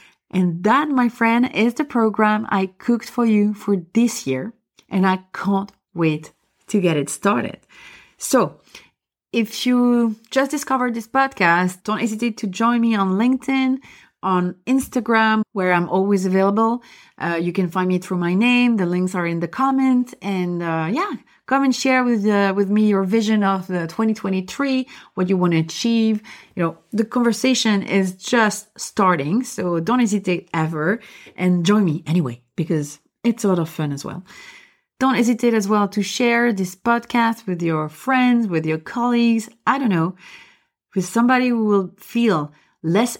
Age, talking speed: 30-49, 170 wpm